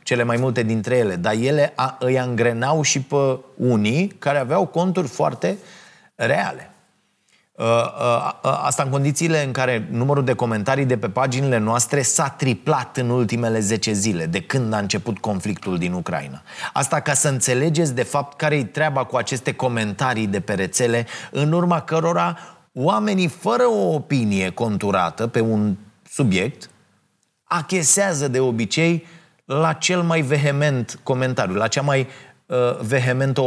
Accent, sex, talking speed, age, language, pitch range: native, male, 145 wpm, 30-49, Romanian, 115-150 Hz